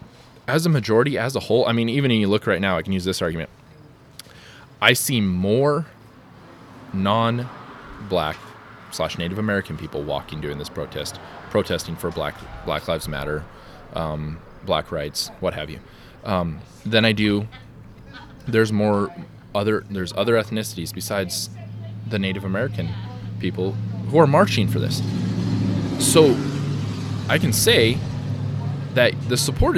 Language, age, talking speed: English, 20-39, 140 wpm